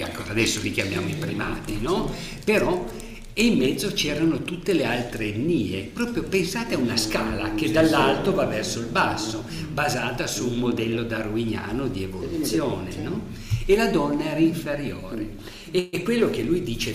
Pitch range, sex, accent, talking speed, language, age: 110-140 Hz, male, native, 155 wpm, Italian, 50-69